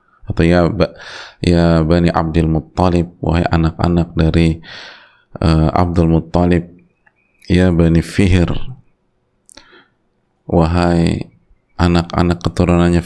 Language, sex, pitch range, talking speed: Indonesian, male, 80-90 Hz, 85 wpm